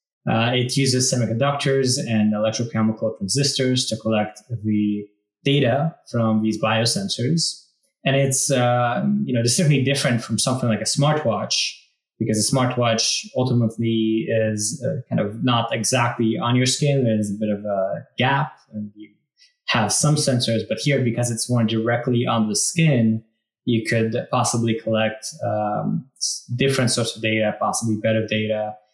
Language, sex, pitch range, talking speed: English, male, 110-130 Hz, 145 wpm